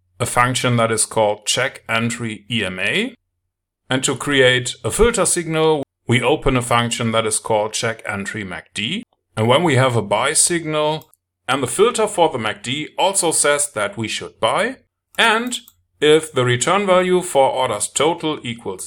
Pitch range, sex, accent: 115-155 Hz, male, German